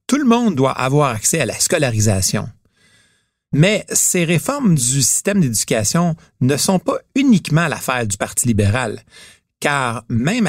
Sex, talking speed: male, 145 wpm